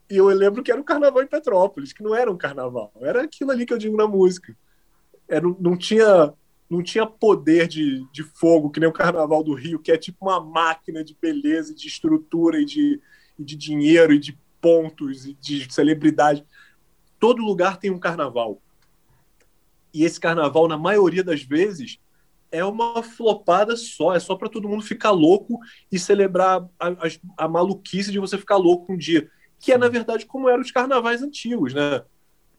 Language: Portuguese